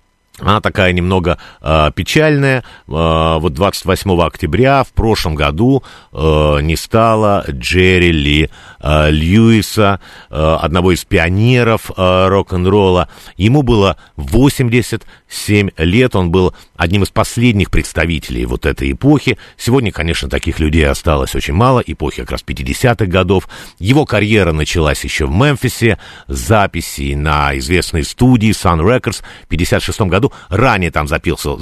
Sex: male